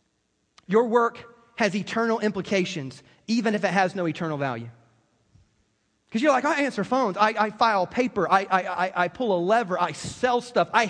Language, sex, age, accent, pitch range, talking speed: English, male, 30-49, American, 205-295 Hz, 175 wpm